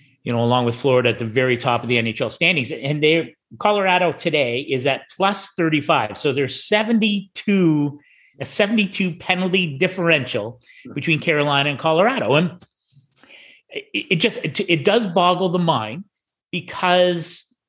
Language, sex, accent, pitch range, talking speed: English, male, American, 140-195 Hz, 140 wpm